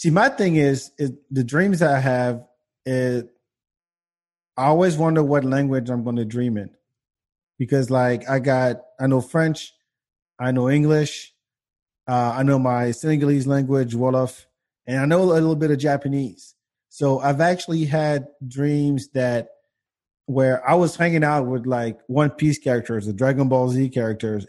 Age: 30-49